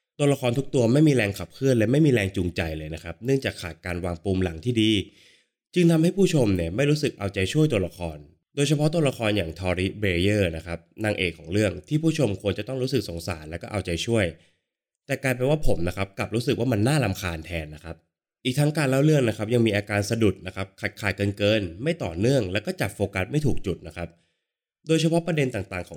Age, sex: 20-39, male